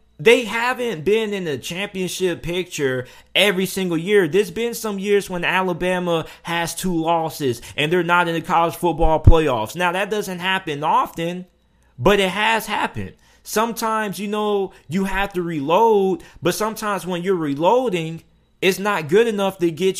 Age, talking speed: 20-39, 160 wpm